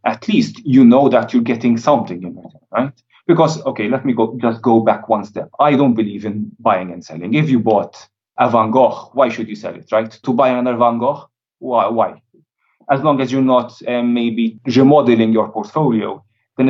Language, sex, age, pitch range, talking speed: English, male, 30-49, 110-130 Hz, 205 wpm